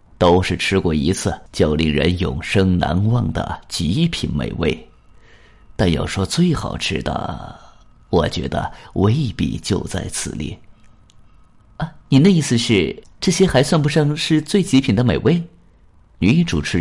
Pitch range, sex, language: 85-125 Hz, male, Chinese